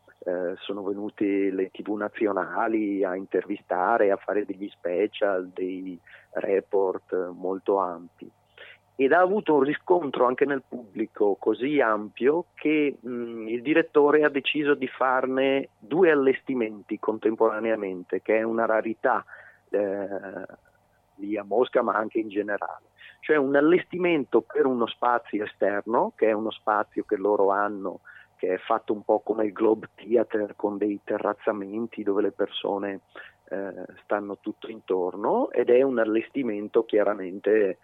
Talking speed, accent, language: 140 wpm, native, Italian